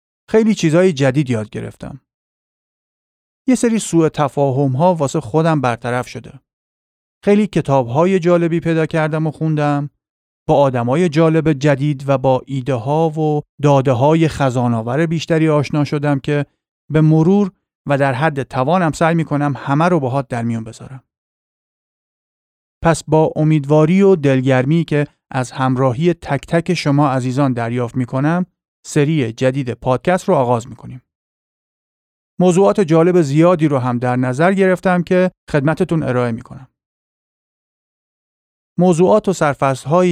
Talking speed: 125 wpm